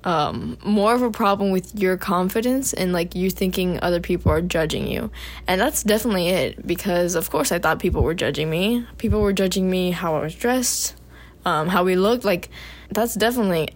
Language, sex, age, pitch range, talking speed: English, female, 10-29, 170-215 Hz, 195 wpm